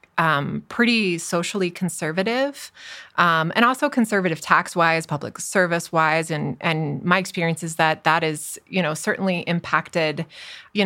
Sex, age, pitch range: female, 20-39, 170-215 Hz